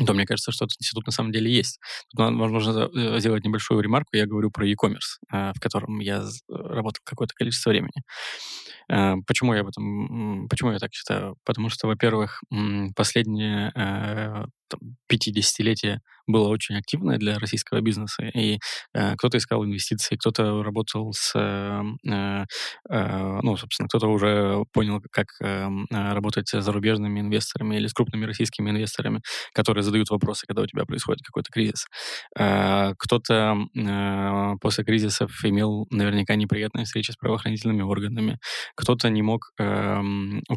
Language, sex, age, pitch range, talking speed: Russian, male, 20-39, 100-115 Hz, 135 wpm